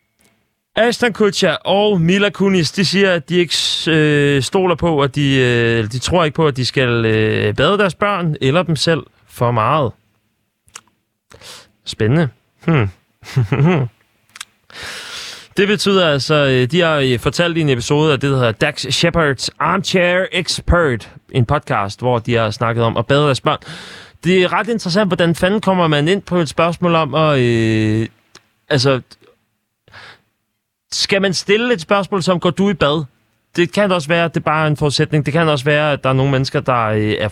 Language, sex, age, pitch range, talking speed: Danish, male, 30-49, 115-165 Hz, 175 wpm